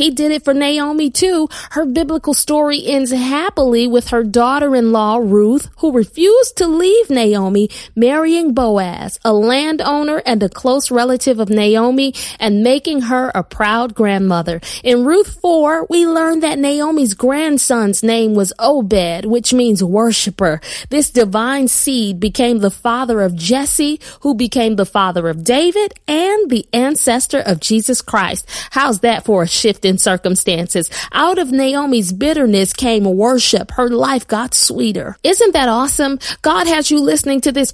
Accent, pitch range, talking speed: American, 220-290 Hz, 155 wpm